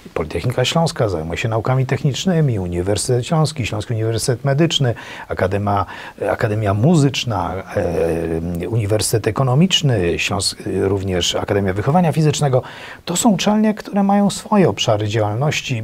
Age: 40-59